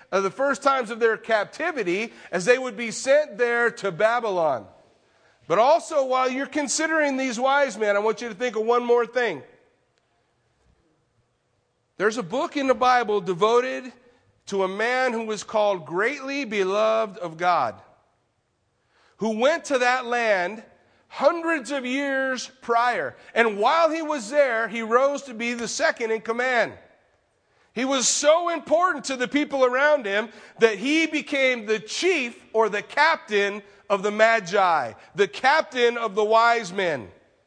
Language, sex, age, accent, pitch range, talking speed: English, male, 40-59, American, 205-265 Hz, 155 wpm